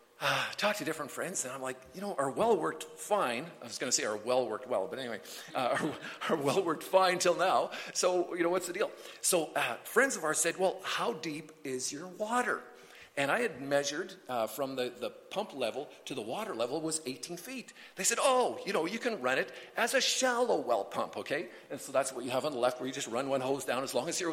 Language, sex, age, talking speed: English, male, 50-69, 255 wpm